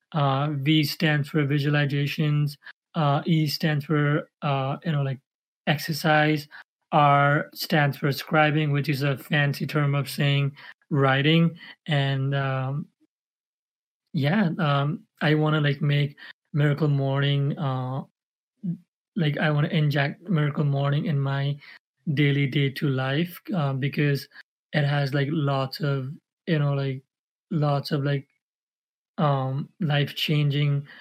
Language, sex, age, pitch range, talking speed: English, male, 30-49, 140-155 Hz, 130 wpm